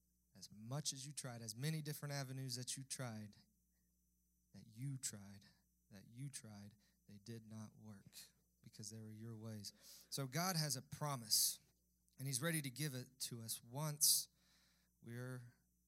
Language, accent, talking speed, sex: English, American, 160 wpm, male